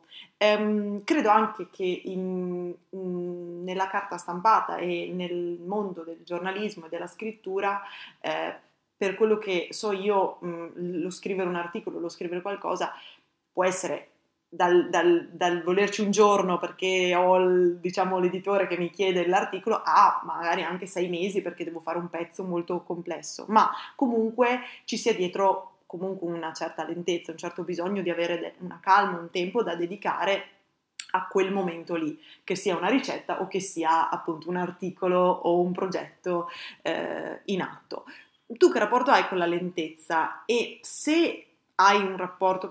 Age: 20-39